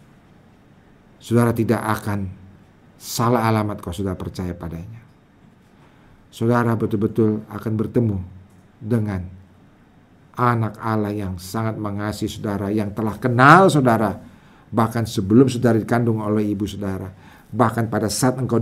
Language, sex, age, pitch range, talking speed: English, male, 50-69, 100-125 Hz, 115 wpm